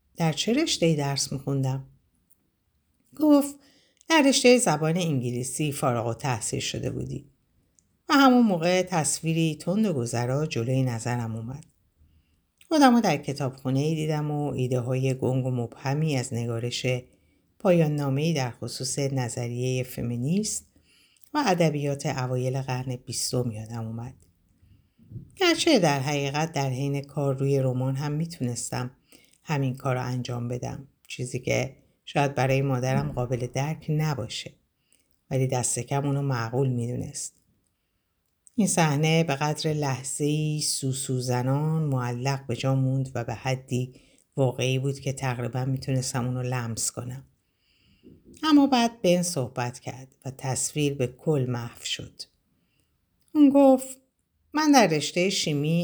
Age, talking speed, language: 60-79, 120 wpm, Persian